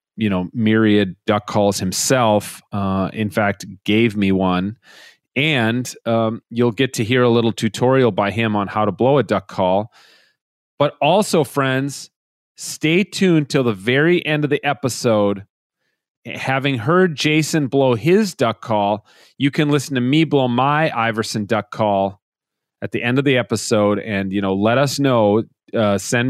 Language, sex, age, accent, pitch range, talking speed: English, male, 40-59, American, 105-140 Hz, 165 wpm